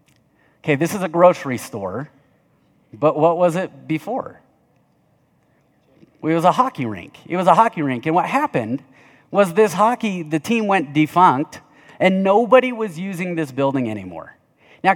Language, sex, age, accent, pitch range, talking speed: English, male, 30-49, American, 140-210 Hz, 155 wpm